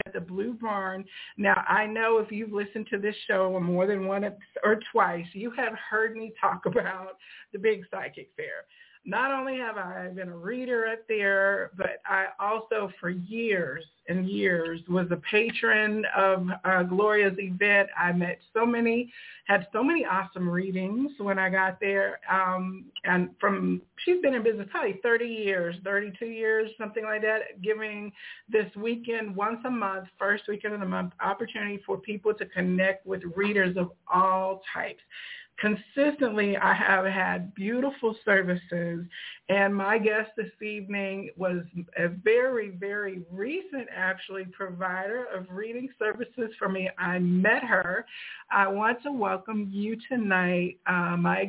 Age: 50-69